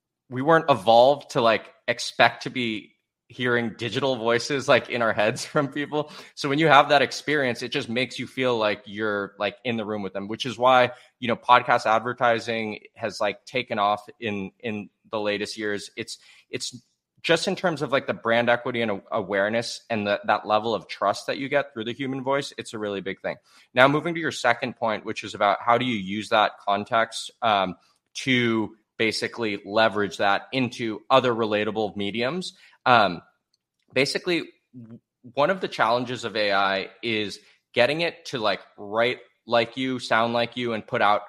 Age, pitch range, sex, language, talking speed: 20-39, 105-130 Hz, male, English, 190 wpm